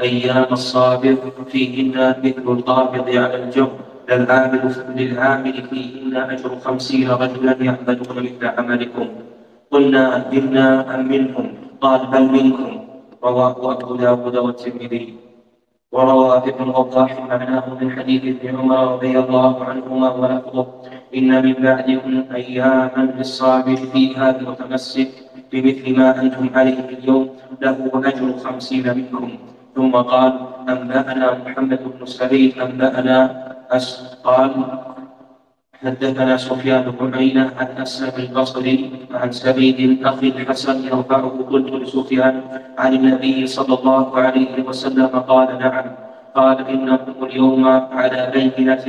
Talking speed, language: 115 wpm, Arabic